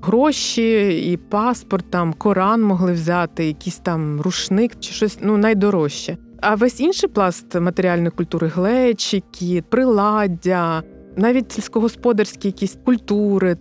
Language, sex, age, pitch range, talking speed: Ukrainian, female, 20-39, 175-220 Hz, 120 wpm